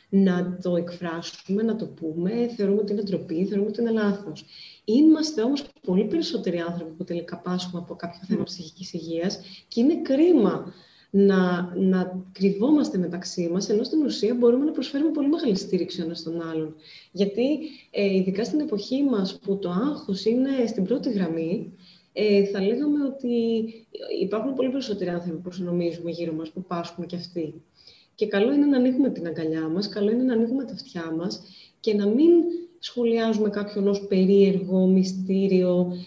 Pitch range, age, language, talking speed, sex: 180-240 Hz, 20-39, Greek, 160 wpm, female